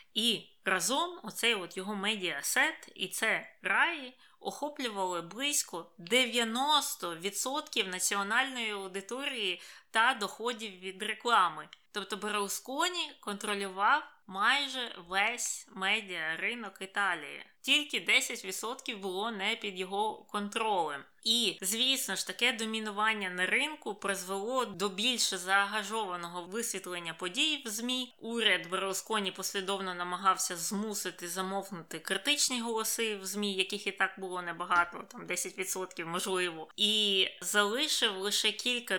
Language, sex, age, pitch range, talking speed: Ukrainian, female, 20-39, 185-230 Hz, 110 wpm